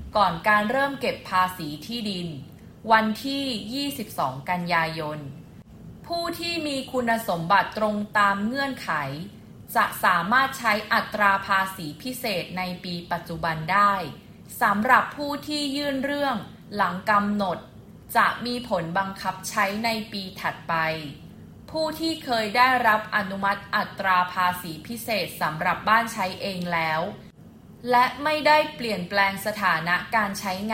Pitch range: 185-240 Hz